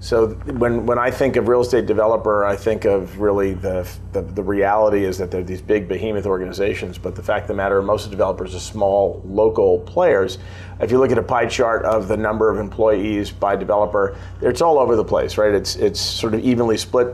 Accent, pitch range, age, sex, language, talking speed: American, 95-110 Hz, 40-59, male, English, 230 wpm